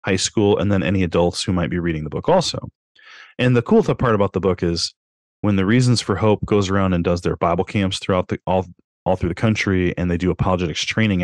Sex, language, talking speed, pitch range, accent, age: male, English, 240 wpm, 85-110 Hz, American, 30-49